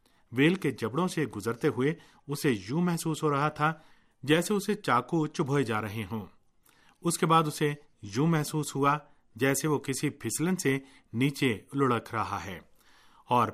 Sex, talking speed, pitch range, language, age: male, 135 wpm, 110-150 Hz, Urdu, 40-59